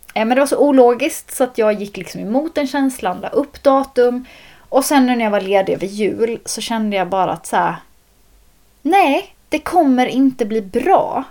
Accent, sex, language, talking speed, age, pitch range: native, female, Swedish, 195 wpm, 20-39, 210-270 Hz